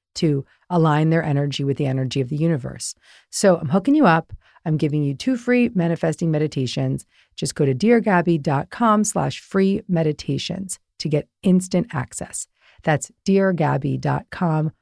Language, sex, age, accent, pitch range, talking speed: English, female, 40-59, American, 160-220 Hz, 140 wpm